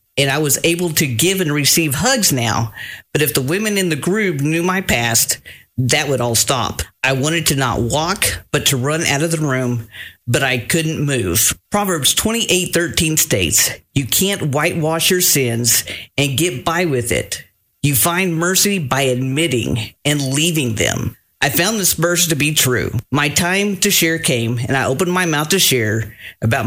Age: 40-59